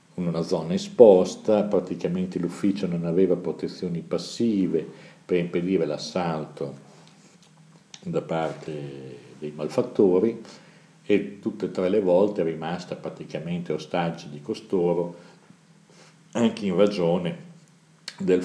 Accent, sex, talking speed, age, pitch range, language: native, male, 105 wpm, 60-79, 80-105 Hz, Italian